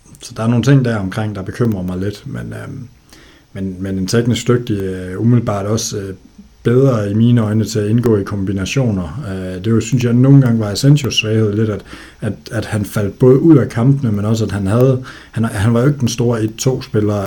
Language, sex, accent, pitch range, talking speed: Danish, male, native, 95-115 Hz, 210 wpm